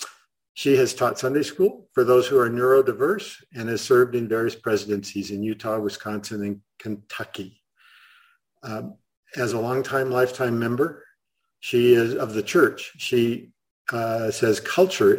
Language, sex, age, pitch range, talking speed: English, male, 50-69, 115-155 Hz, 140 wpm